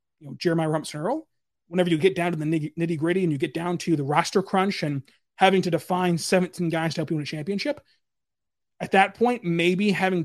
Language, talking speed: English, 200 wpm